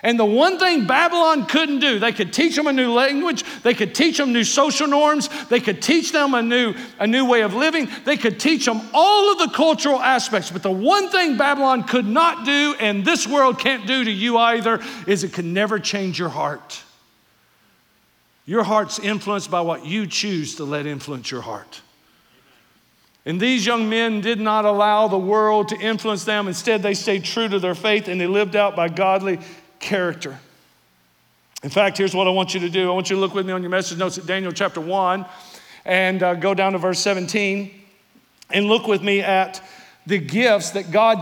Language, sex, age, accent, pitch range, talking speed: English, male, 50-69, American, 195-240 Hz, 205 wpm